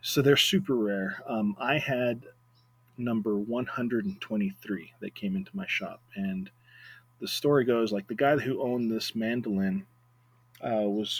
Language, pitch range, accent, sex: English, 110-130 Hz, American, male